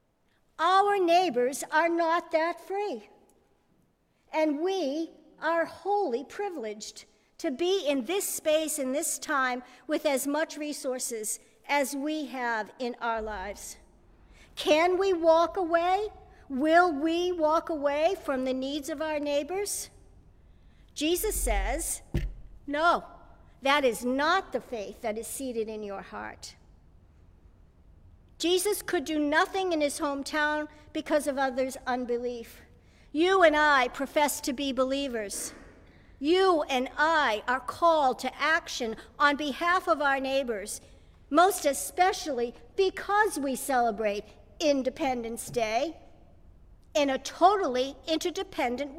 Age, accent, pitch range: 50-69, American, 235-330 Hz